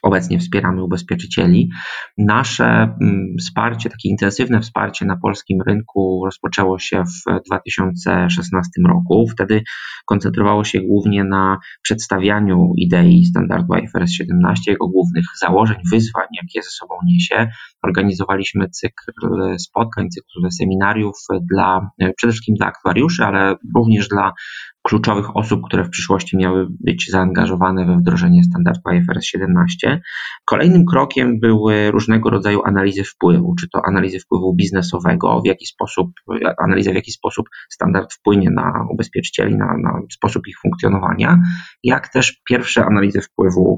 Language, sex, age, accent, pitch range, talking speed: Polish, male, 20-39, native, 95-125 Hz, 125 wpm